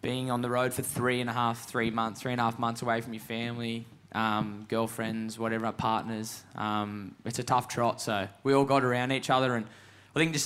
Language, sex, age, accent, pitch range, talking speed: English, male, 10-29, Australian, 115-130 Hz, 230 wpm